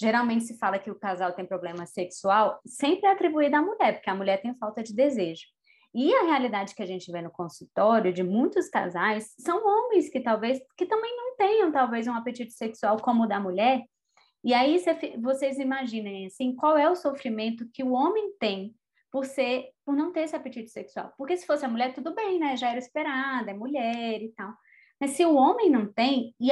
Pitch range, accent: 215-280 Hz, Brazilian